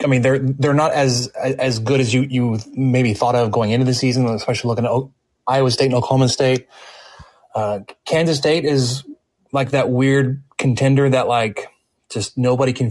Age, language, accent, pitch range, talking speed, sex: 20-39, English, American, 115-135 Hz, 180 wpm, male